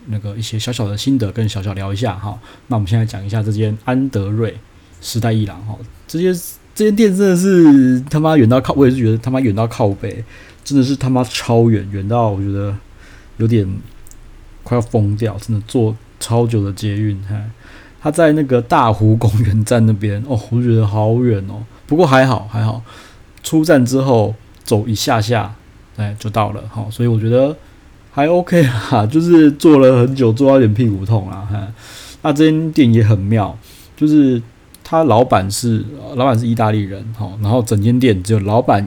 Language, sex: Chinese, male